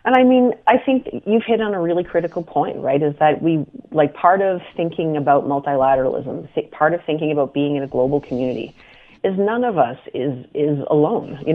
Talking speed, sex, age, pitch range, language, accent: 210 wpm, female, 30-49, 135-155 Hz, English, American